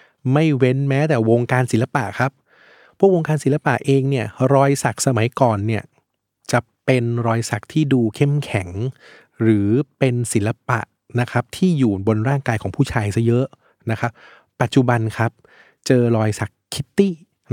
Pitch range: 110-140 Hz